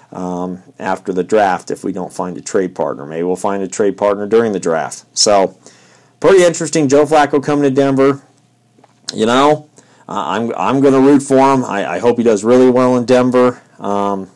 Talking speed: 195 wpm